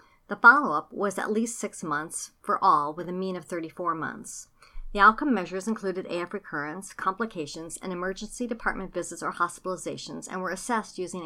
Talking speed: 170 wpm